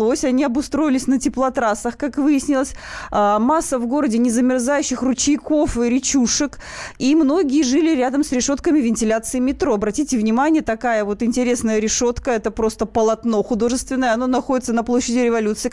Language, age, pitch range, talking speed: Russian, 20-39, 210-265 Hz, 140 wpm